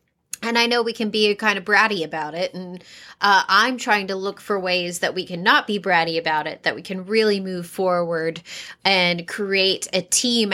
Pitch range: 180-215 Hz